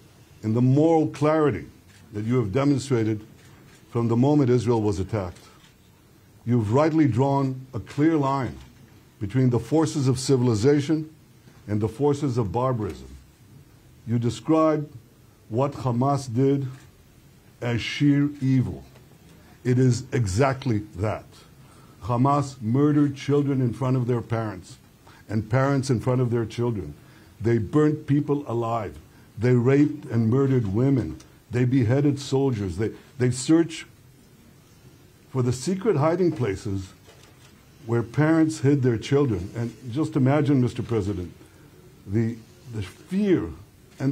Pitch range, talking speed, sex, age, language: 110-140 Hz, 125 wpm, male, 60-79, English